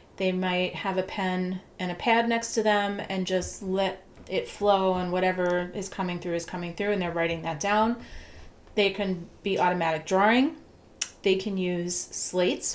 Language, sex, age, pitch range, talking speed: English, female, 30-49, 175-205 Hz, 180 wpm